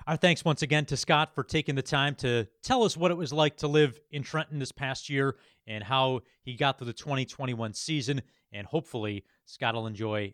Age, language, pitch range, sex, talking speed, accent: 30-49, English, 125-160 Hz, male, 215 wpm, American